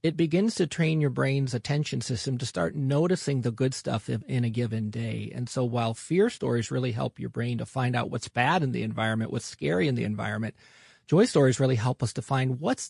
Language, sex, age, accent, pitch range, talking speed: English, male, 40-59, American, 120-160 Hz, 225 wpm